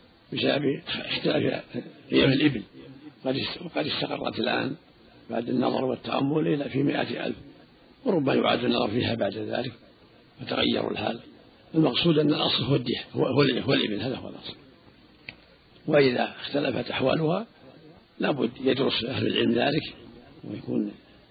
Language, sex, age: Arabic, male, 60-79